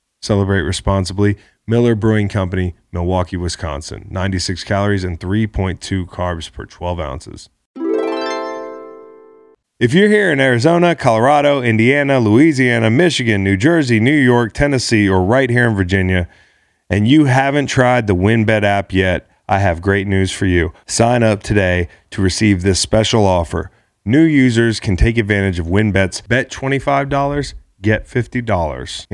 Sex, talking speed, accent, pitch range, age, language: male, 140 wpm, American, 95-115 Hz, 30-49, English